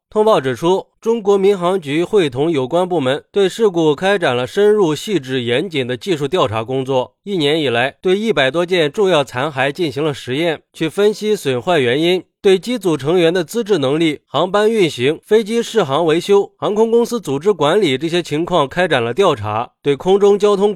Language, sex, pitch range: Chinese, male, 150-210 Hz